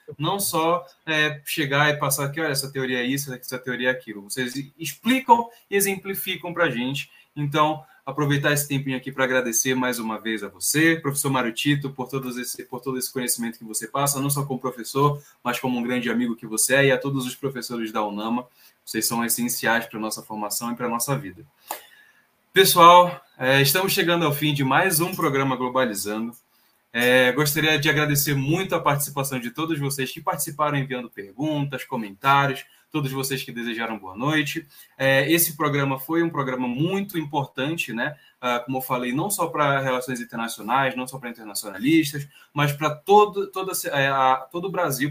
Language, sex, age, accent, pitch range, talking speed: Portuguese, male, 10-29, Brazilian, 125-155 Hz, 180 wpm